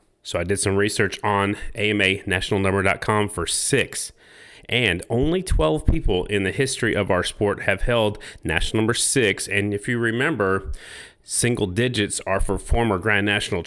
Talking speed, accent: 155 wpm, American